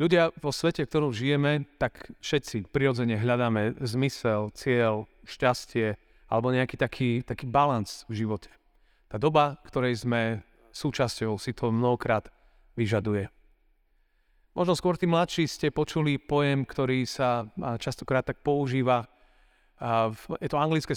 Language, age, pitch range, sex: Slovak, 30-49, 120-145 Hz, male